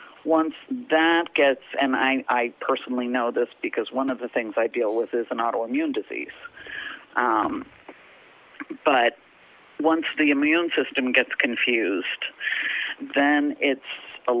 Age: 50-69